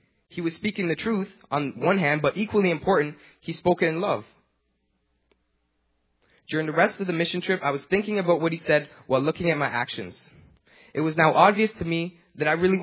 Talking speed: 205 wpm